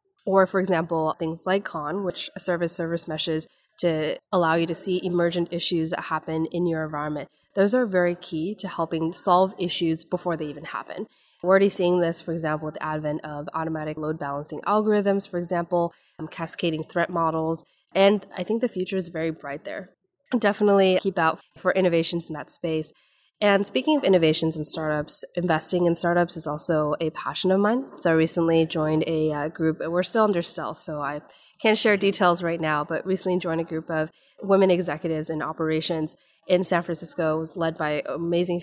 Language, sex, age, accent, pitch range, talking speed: English, female, 20-39, American, 160-185 Hz, 195 wpm